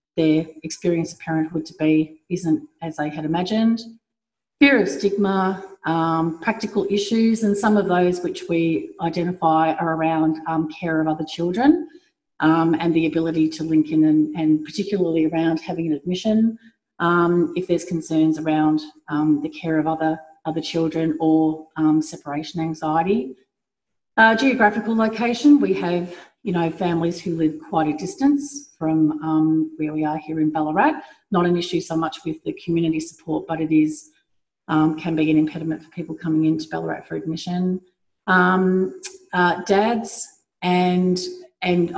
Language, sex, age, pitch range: English, female, 40-59, 160-200 Hz